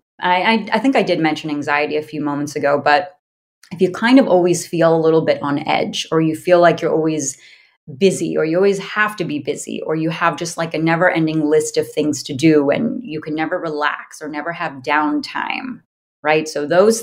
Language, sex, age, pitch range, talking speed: English, female, 30-49, 155-185 Hz, 220 wpm